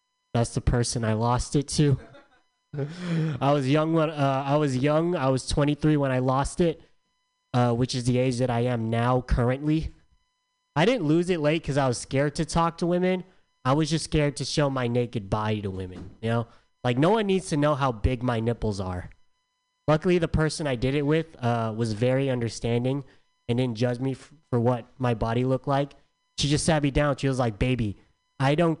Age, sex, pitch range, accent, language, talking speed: 20-39, male, 115-160 Hz, American, English, 210 wpm